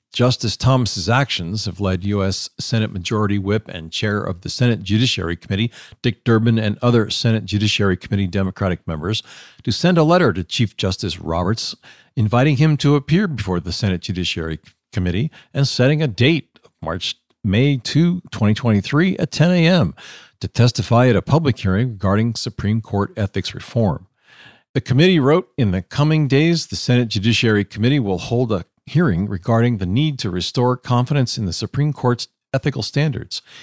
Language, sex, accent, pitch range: English, male, American, 100-130 Hz